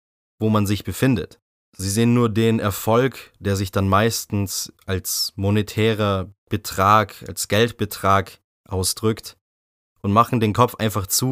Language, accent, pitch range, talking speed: German, German, 100-125 Hz, 135 wpm